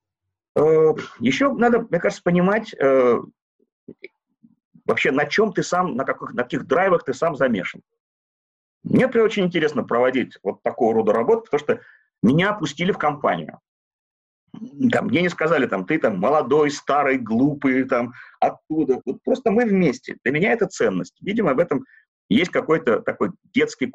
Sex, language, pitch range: male, Russian, 155-235 Hz